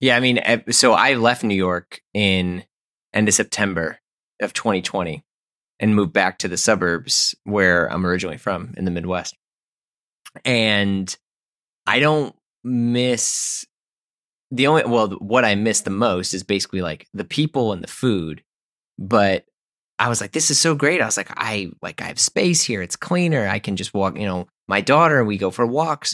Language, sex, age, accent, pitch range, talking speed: English, male, 20-39, American, 95-125 Hz, 180 wpm